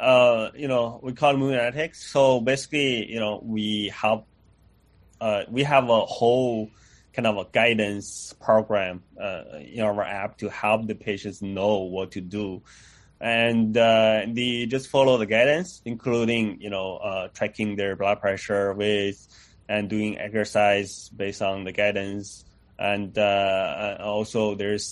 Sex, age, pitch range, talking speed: male, 20-39, 100-115 Hz, 150 wpm